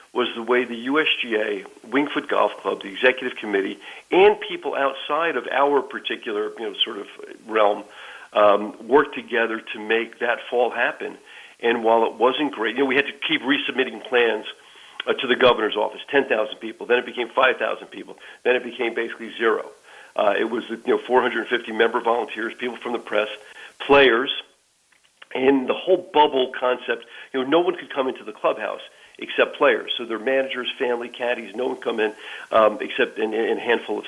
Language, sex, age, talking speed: English, male, 50-69, 185 wpm